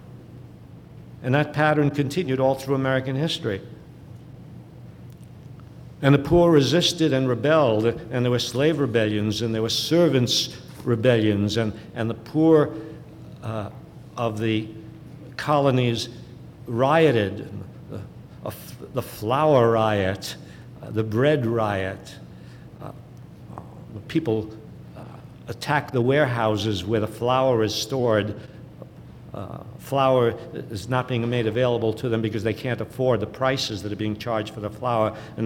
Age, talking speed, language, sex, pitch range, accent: 60-79, 130 wpm, English, male, 110-135 Hz, American